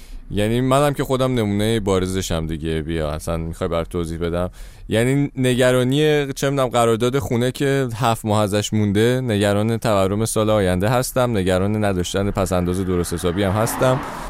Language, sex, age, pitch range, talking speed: Persian, male, 20-39, 95-130 Hz, 150 wpm